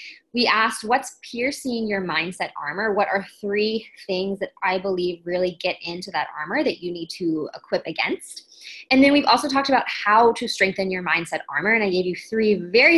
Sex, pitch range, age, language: female, 190-245 Hz, 20-39, English